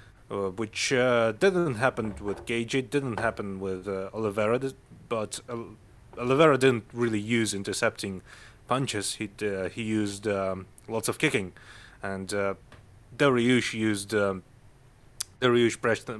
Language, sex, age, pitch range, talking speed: English, male, 30-49, 100-125 Hz, 120 wpm